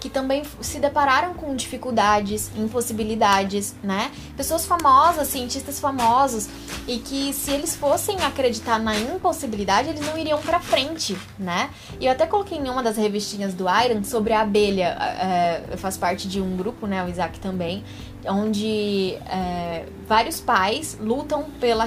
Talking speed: 150 wpm